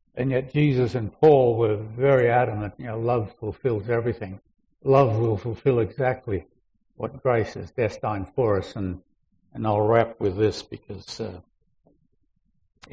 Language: English